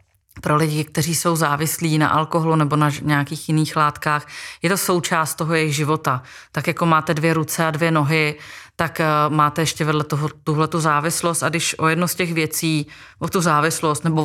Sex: female